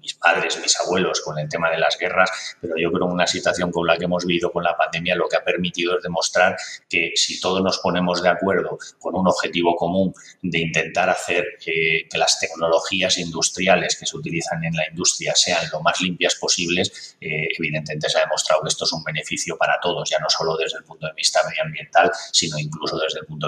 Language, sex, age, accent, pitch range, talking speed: Spanish, male, 30-49, Spanish, 80-95 Hz, 220 wpm